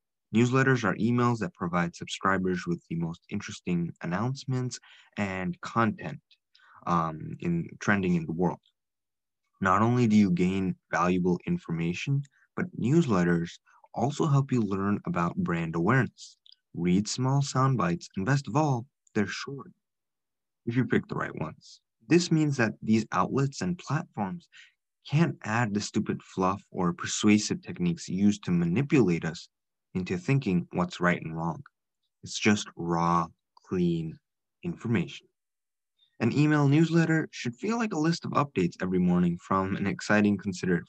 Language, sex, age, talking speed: English, male, 20-39, 140 wpm